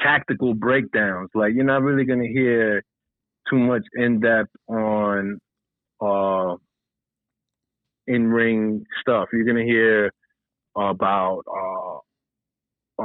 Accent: American